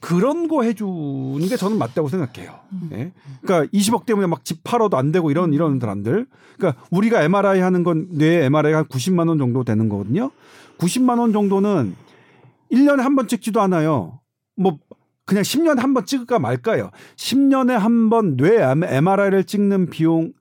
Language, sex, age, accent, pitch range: Korean, male, 40-59, native, 160-230 Hz